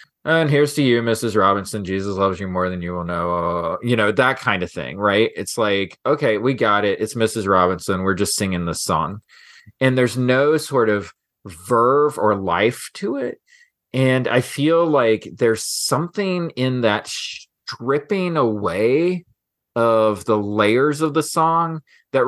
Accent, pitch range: American, 105-145 Hz